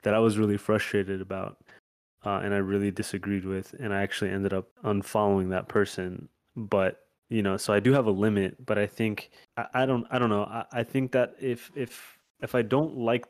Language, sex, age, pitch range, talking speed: English, male, 20-39, 95-110 Hz, 215 wpm